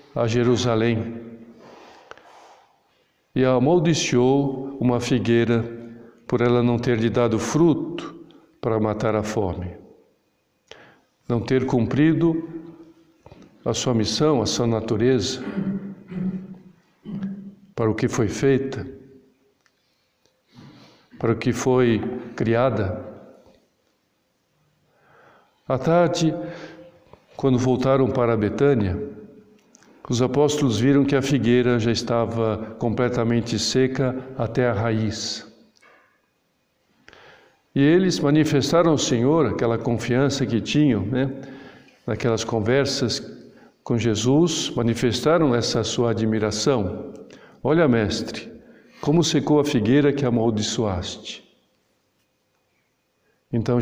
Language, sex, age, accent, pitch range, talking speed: Portuguese, male, 60-79, Brazilian, 115-145 Hz, 95 wpm